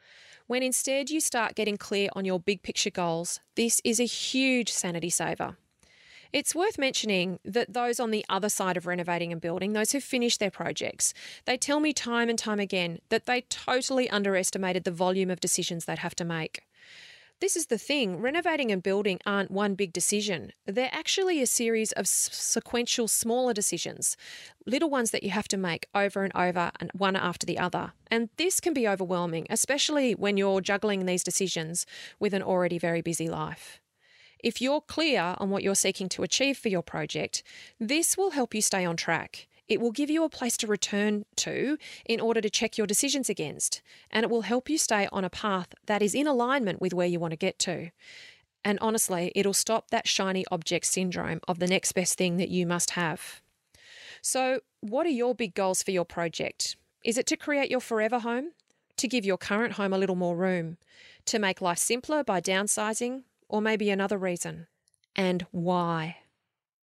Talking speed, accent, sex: 190 wpm, Australian, female